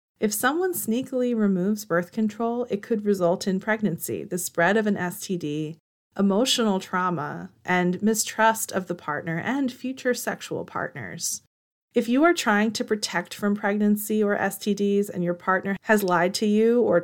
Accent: American